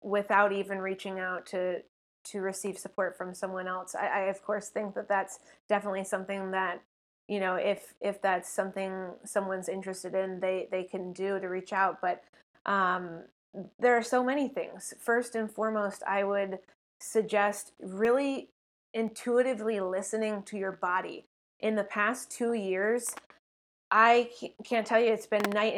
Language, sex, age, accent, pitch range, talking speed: English, female, 20-39, American, 195-230 Hz, 160 wpm